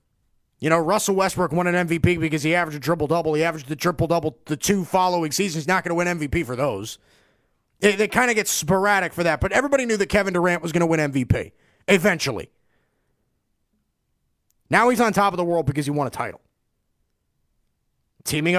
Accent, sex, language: American, male, English